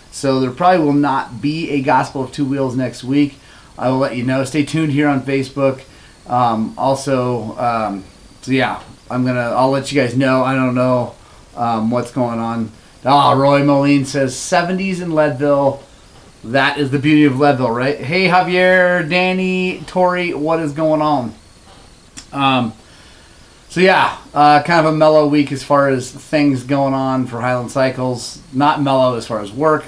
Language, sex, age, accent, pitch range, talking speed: English, male, 30-49, American, 125-155 Hz, 175 wpm